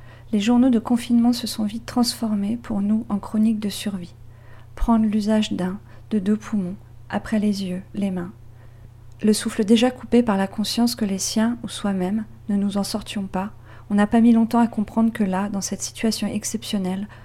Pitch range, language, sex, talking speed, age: 190-215 Hz, French, female, 190 wpm, 40-59